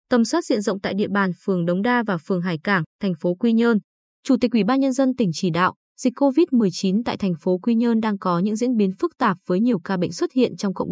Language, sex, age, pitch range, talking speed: Vietnamese, female, 20-39, 190-250 Hz, 275 wpm